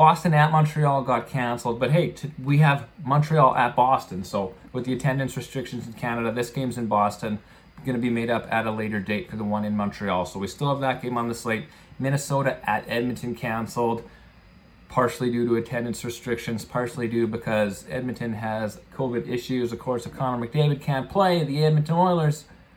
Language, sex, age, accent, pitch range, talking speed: English, male, 30-49, American, 115-140 Hz, 190 wpm